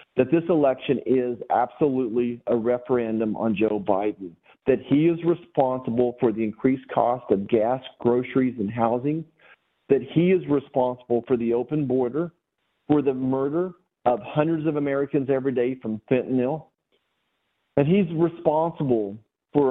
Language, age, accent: English, 50-69, American